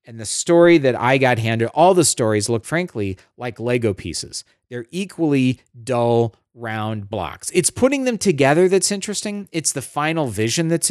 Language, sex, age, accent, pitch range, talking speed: English, male, 40-59, American, 115-170 Hz, 170 wpm